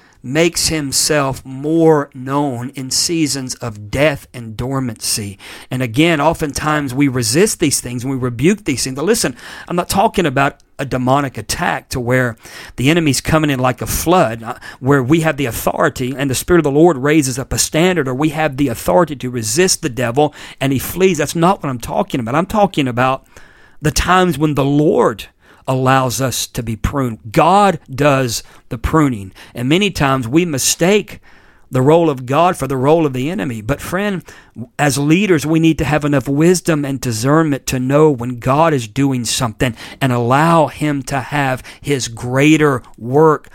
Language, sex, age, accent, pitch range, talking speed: English, male, 50-69, American, 130-160 Hz, 180 wpm